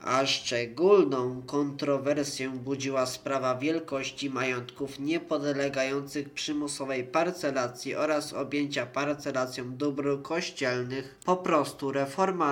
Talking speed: 85 wpm